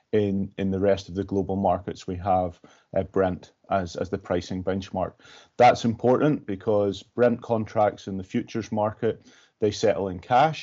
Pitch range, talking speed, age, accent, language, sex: 100-115 Hz, 170 wpm, 30-49, British, English, male